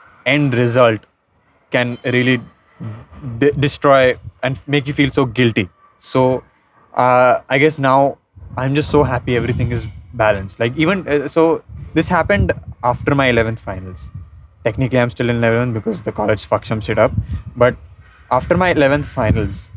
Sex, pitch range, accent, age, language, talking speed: male, 110-145 Hz, Indian, 20-39, English, 155 wpm